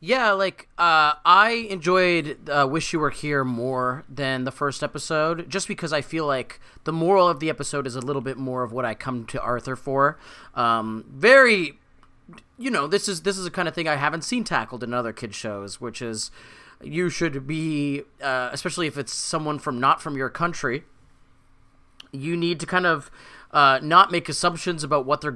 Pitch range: 135-175 Hz